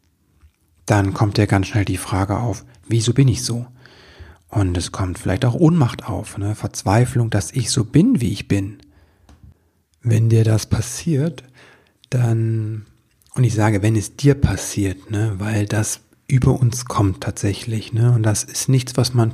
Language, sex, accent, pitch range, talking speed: German, male, German, 105-125 Hz, 160 wpm